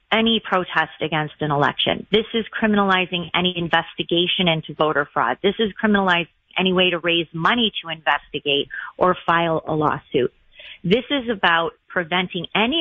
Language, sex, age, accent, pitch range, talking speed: English, female, 30-49, American, 160-200 Hz, 150 wpm